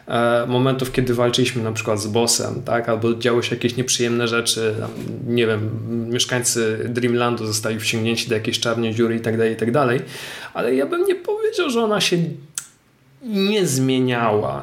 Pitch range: 120-160 Hz